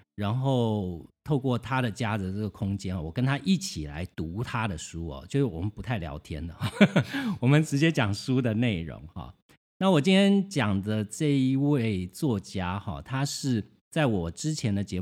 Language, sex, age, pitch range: Chinese, male, 50-69, 95-135 Hz